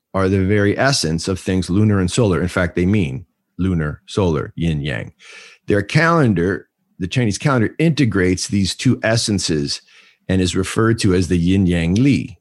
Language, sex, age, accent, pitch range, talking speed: English, male, 50-69, American, 90-125 Hz, 170 wpm